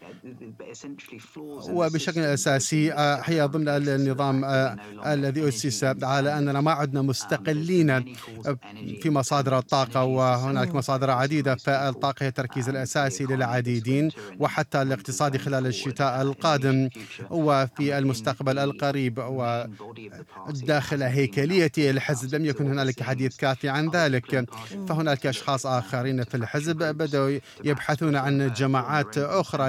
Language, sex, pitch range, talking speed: Arabic, male, 130-150 Hz, 105 wpm